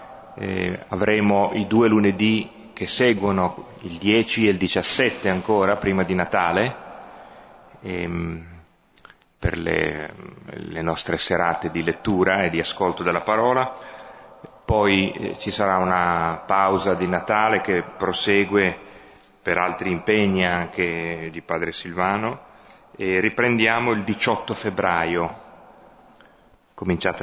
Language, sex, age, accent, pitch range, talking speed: Italian, male, 30-49, native, 85-105 Hz, 115 wpm